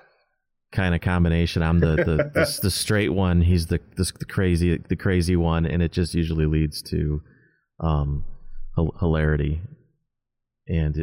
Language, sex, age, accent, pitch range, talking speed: English, male, 30-49, American, 75-90 Hz, 145 wpm